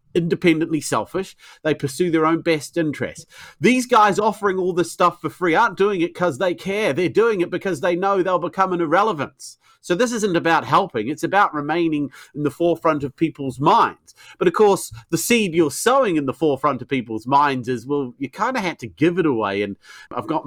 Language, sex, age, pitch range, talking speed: English, male, 40-59, 150-195 Hz, 210 wpm